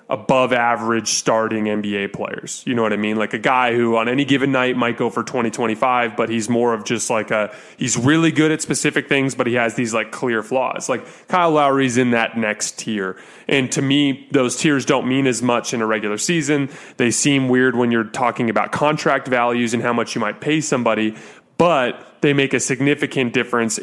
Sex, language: male, English